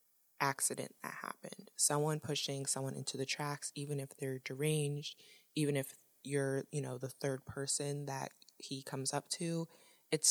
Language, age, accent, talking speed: English, 20-39, American, 155 wpm